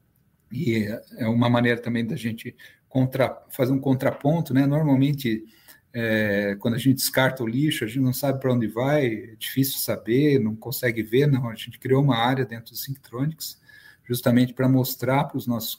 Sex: male